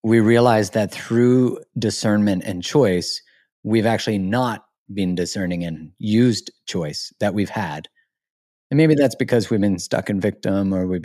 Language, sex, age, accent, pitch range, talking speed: English, male, 30-49, American, 90-115 Hz, 155 wpm